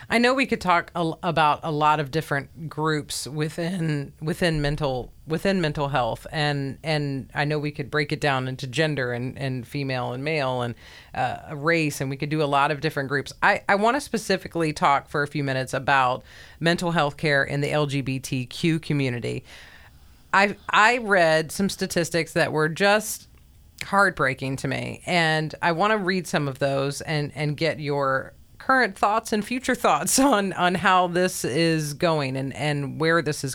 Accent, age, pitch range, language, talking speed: American, 40-59, 140-180 Hz, English, 185 wpm